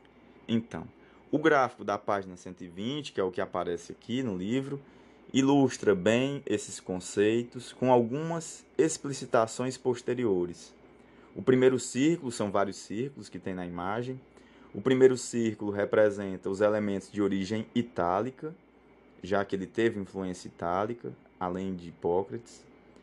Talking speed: 130 wpm